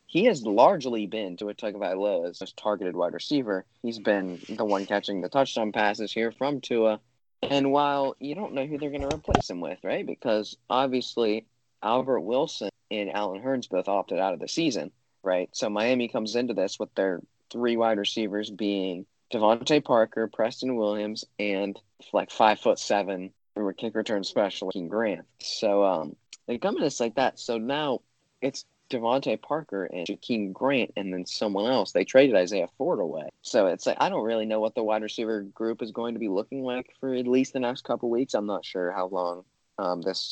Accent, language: American, English